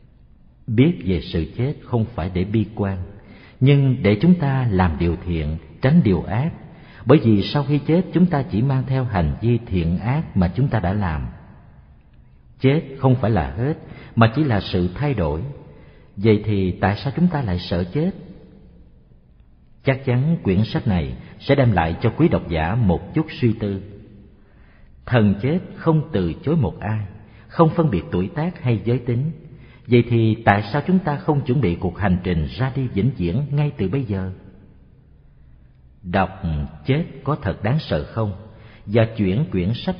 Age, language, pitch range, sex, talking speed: 50-69, Vietnamese, 95-140 Hz, male, 180 wpm